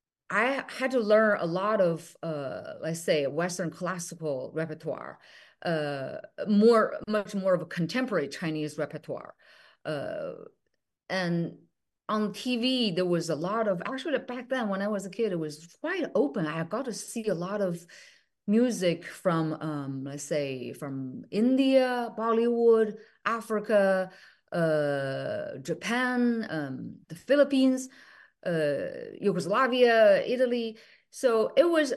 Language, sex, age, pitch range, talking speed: English, female, 30-49, 165-240 Hz, 130 wpm